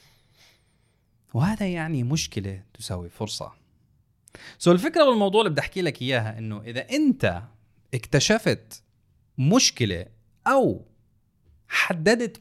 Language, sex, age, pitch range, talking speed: Arabic, male, 30-49, 110-170 Hz, 95 wpm